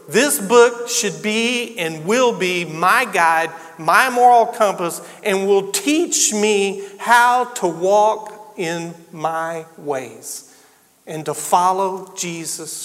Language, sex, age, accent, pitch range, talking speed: English, male, 50-69, American, 165-215 Hz, 120 wpm